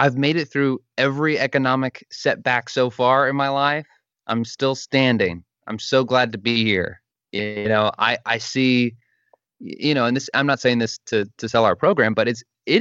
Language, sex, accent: English, male, American